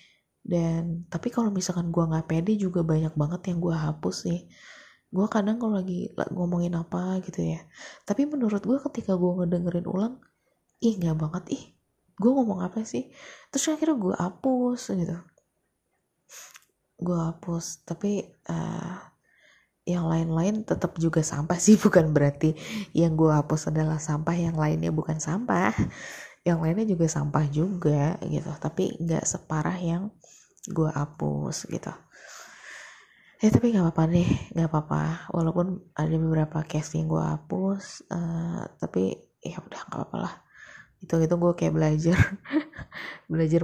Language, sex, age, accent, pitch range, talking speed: Indonesian, female, 20-39, native, 160-190 Hz, 140 wpm